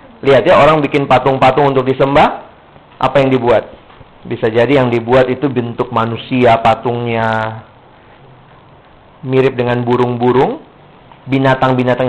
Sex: male